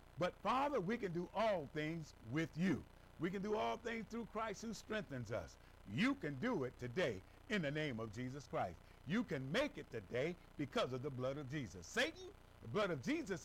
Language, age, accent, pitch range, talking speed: English, 50-69, American, 145-225 Hz, 205 wpm